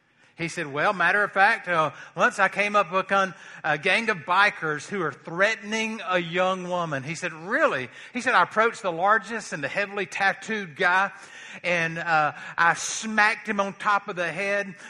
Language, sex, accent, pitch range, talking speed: English, male, American, 160-205 Hz, 190 wpm